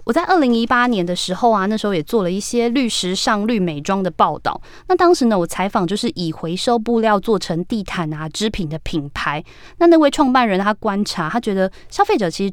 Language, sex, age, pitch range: Chinese, female, 20-39, 180-240 Hz